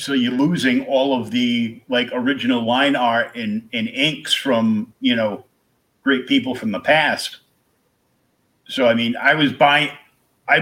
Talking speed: 160 wpm